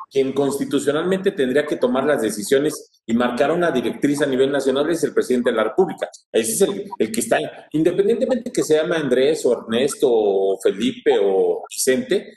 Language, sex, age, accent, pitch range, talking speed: Spanish, male, 40-59, Mexican, 145-215 Hz, 190 wpm